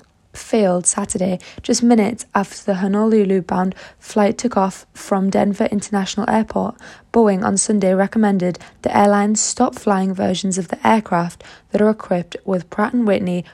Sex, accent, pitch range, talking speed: female, British, 185-215 Hz, 145 wpm